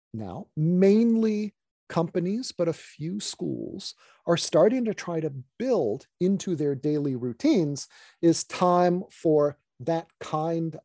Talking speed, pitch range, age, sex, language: 120 wpm, 135-175 Hz, 40-59, male, English